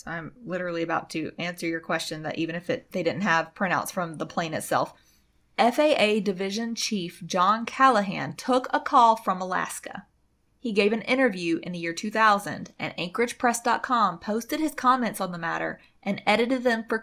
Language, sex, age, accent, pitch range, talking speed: English, female, 20-39, American, 195-265 Hz, 175 wpm